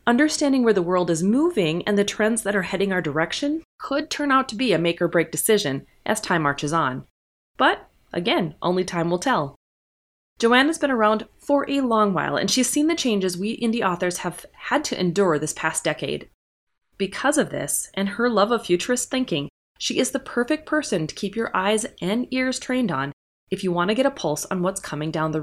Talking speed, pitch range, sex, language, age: 210 wpm, 165-235 Hz, female, English, 20-39